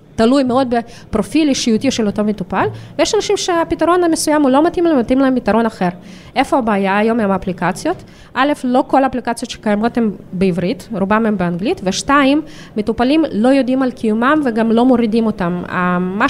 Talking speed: 170 wpm